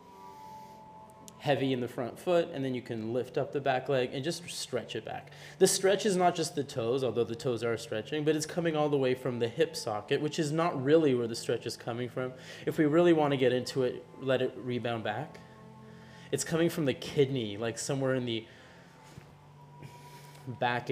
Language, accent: English, American